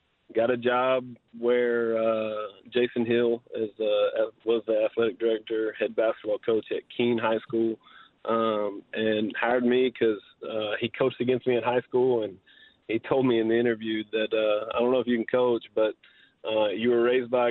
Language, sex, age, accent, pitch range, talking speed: English, male, 20-39, American, 110-125 Hz, 190 wpm